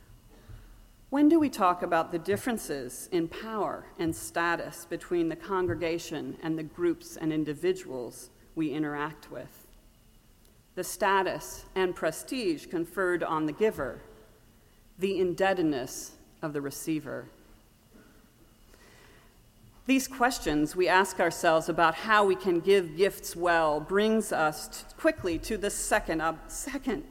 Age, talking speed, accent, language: 40-59, 120 wpm, American, English